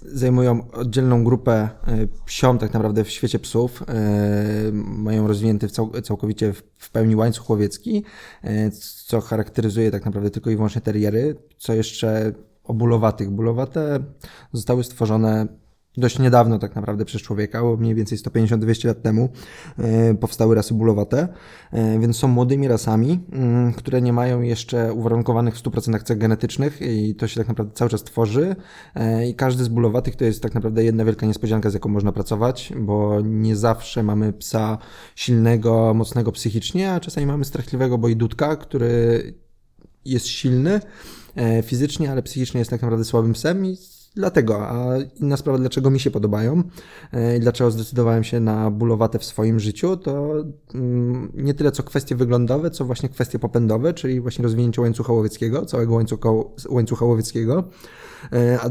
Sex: male